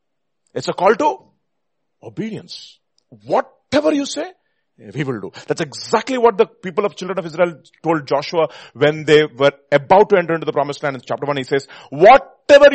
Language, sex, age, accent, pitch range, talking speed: English, male, 40-59, Indian, 145-190 Hz, 180 wpm